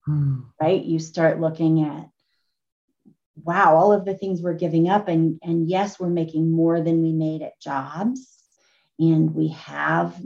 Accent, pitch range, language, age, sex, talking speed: American, 155-175 Hz, English, 30-49, female, 160 wpm